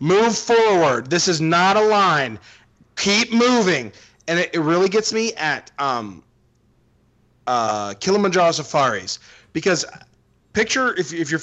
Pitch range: 150-225 Hz